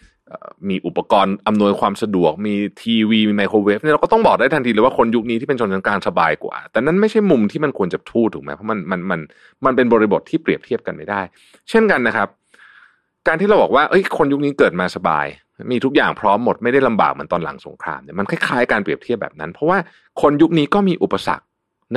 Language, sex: Thai, male